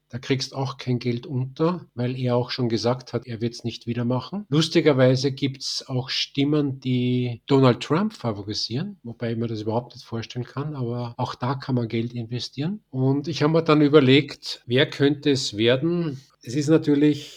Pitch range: 120-135 Hz